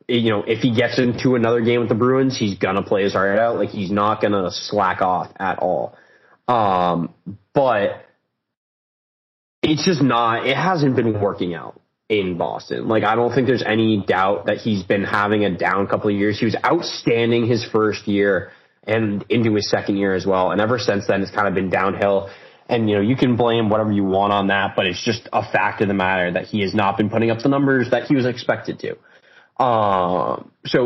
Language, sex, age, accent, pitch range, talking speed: English, male, 20-39, American, 100-130 Hz, 215 wpm